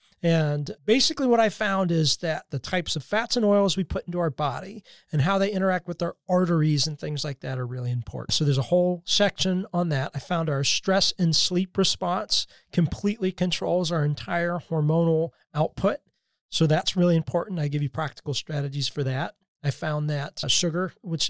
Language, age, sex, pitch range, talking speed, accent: English, 40-59, male, 145-180 Hz, 190 wpm, American